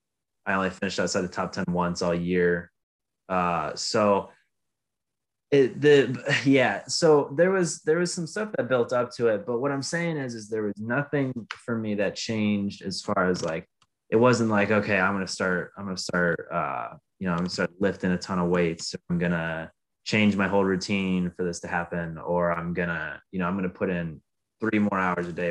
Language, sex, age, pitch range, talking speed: English, male, 20-39, 90-115 Hz, 210 wpm